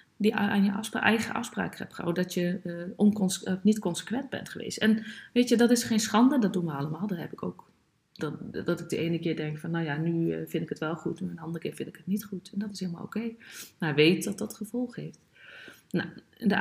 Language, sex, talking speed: Dutch, female, 245 wpm